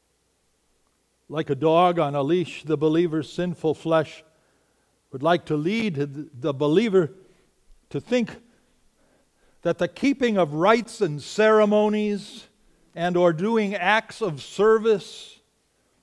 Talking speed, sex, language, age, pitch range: 115 wpm, male, English, 60-79, 145-200 Hz